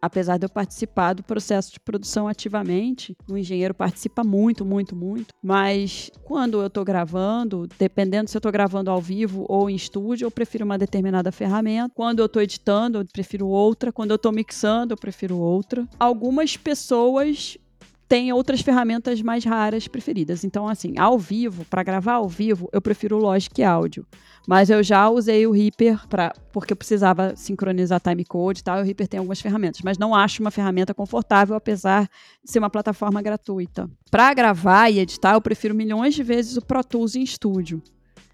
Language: Portuguese